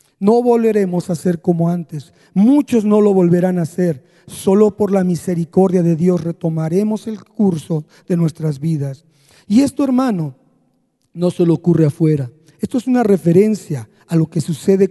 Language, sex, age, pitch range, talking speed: Spanish, male, 50-69, 170-230 Hz, 160 wpm